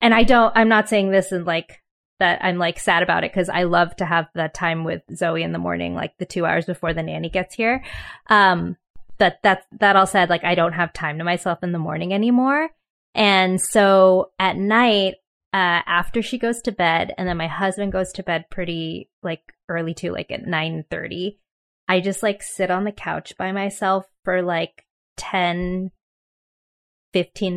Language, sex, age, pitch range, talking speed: English, female, 20-39, 175-210 Hz, 195 wpm